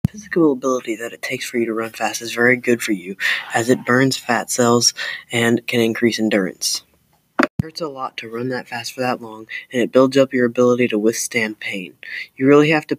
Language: English